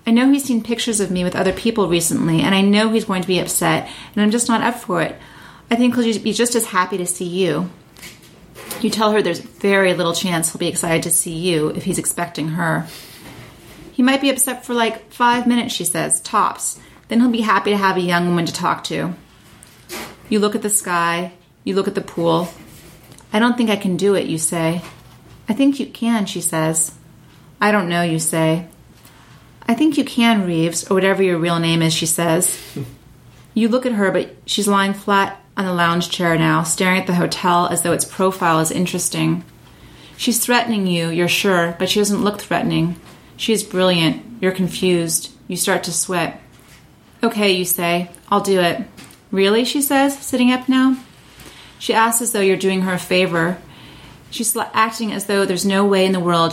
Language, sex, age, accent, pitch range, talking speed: English, female, 30-49, American, 170-215 Hz, 205 wpm